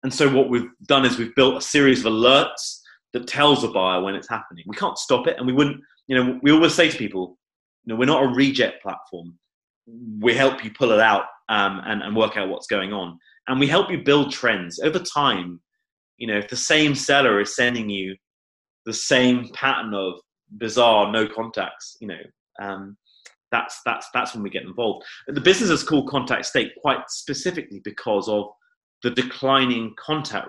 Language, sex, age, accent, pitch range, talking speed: English, male, 30-49, British, 105-145 Hz, 200 wpm